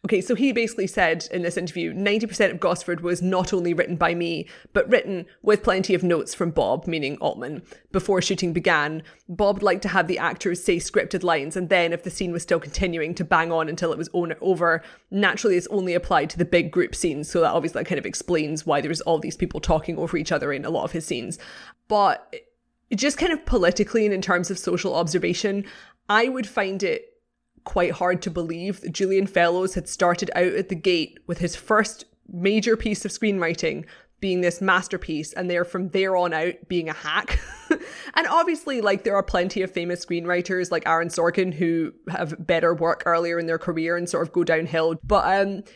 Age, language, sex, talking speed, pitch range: 20-39, English, female, 205 wpm, 170-200 Hz